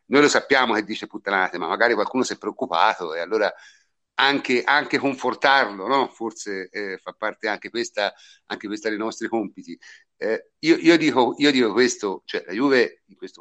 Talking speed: 185 wpm